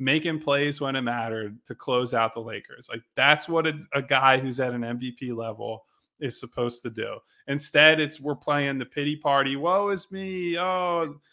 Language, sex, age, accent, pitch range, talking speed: English, male, 20-39, American, 130-165 Hz, 190 wpm